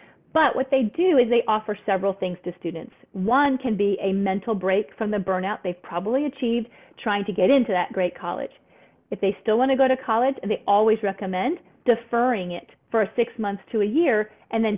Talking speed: 205 wpm